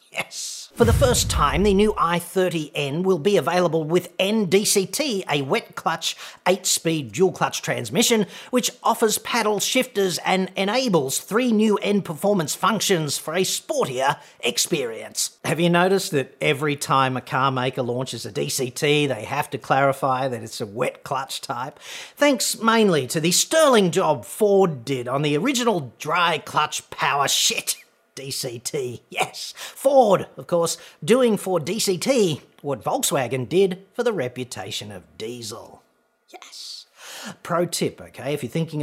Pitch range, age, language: 145-200 Hz, 40-59, English